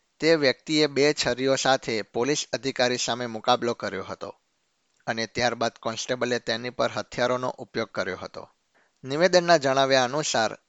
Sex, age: male, 50-69